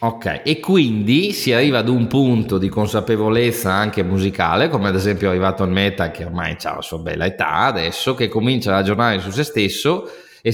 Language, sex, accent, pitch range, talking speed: Italian, male, native, 95-115 Hz, 200 wpm